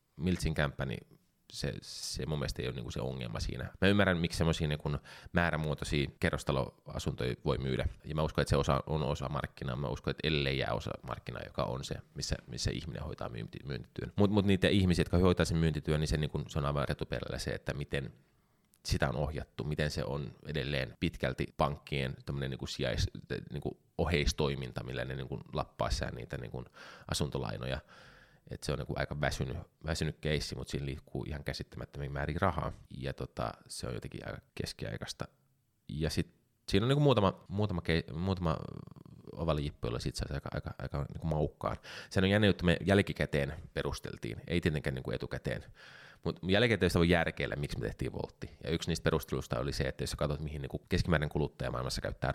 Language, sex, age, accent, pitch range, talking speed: Finnish, male, 20-39, native, 70-85 Hz, 185 wpm